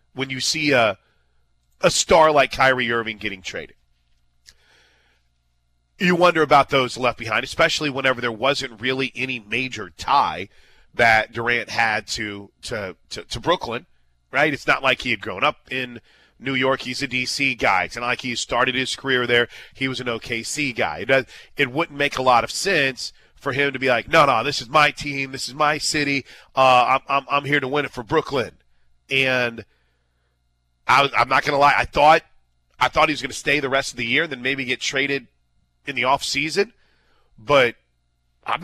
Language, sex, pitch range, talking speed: English, male, 105-145 Hz, 195 wpm